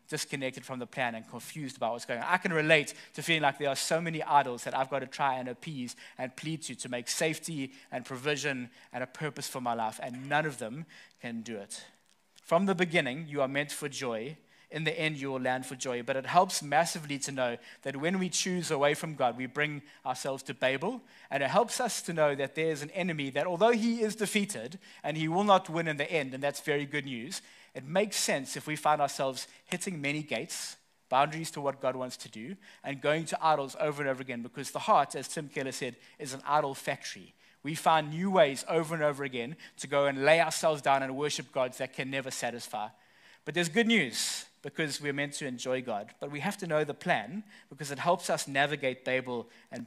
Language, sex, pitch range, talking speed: English, male, 130-160 Hz, 230 wpm